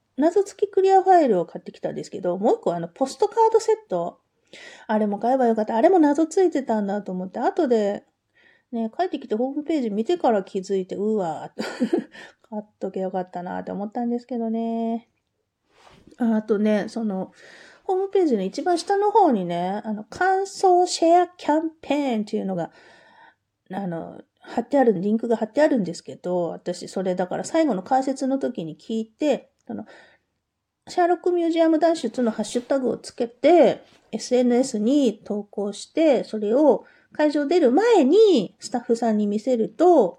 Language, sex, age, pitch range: Japanese, female, 40-59, 210-330 Hz